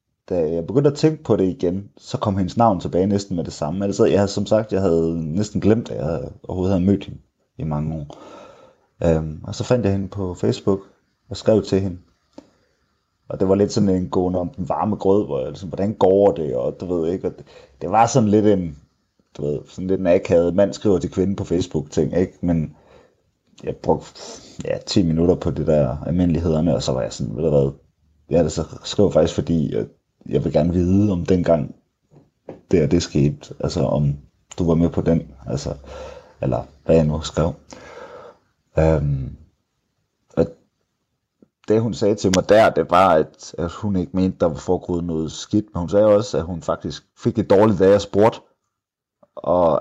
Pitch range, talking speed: 80-100 Hz, 205 wpm